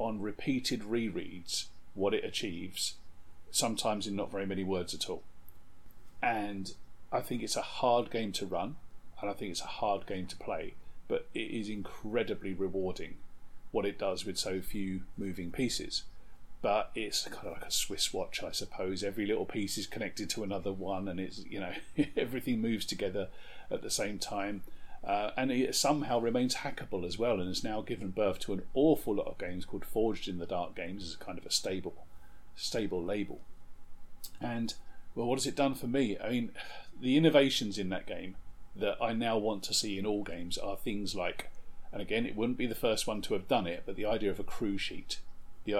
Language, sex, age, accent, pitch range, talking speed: English, male, 40-59, British, 90-115 Hz, 200 wpm